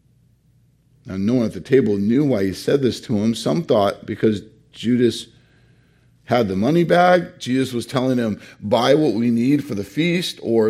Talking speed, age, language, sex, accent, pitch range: 185 wpm, 40-59, English, male, American, 110-140 Hz